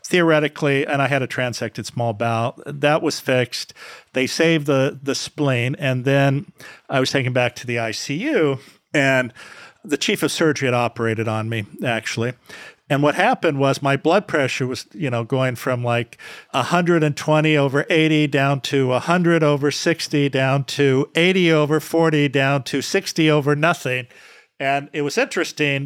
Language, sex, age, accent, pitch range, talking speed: English, male, 50-69, American, 135-165 Hz, 160 wpm